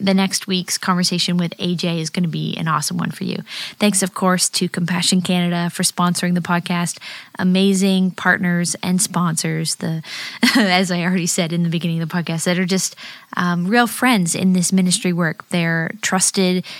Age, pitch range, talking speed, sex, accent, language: 20-39, 175-195 Hz, 185 wpm, female, American, English